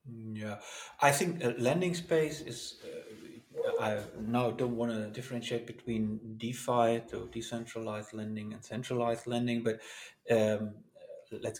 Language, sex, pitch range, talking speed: English, male, 110-125 Hz, 130 wpm